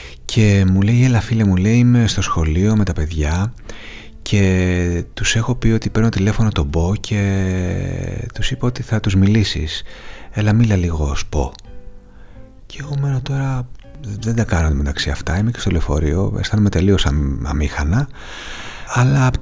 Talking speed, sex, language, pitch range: 160 wpm, male, Greek, 90-135 Hz